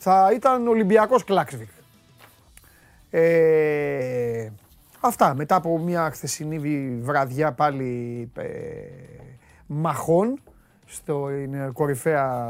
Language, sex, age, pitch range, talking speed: Greek, male, 30-49, 130-180 Hz, 80 wpm